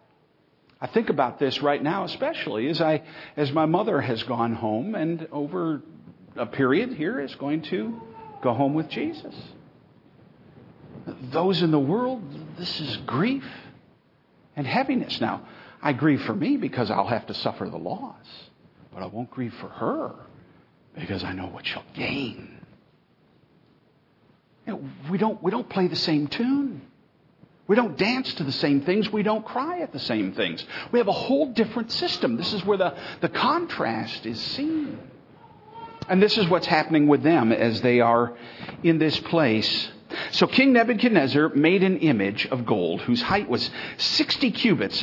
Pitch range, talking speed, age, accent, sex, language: 145-230 Hz, 165 wpm, 60-79, American, male, English